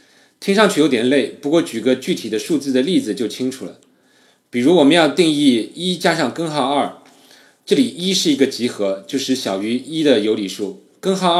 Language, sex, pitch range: Chinese, male, 105-155 Hz